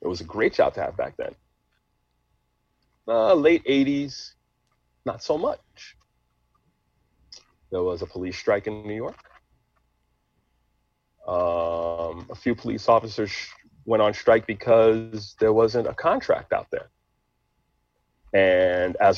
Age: 40-59